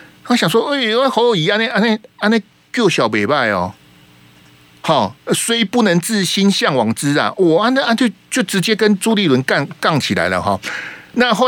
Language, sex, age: Chinese, male, 50-69